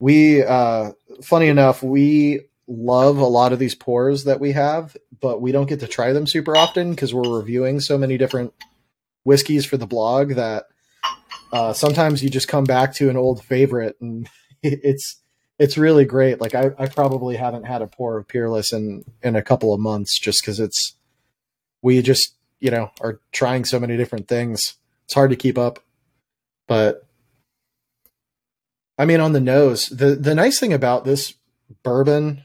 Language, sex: English, male